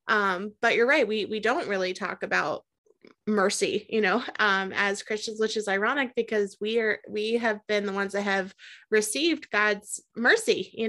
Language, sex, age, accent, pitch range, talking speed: English, female, 20-39, American, 195-230 Hz, 180 wpm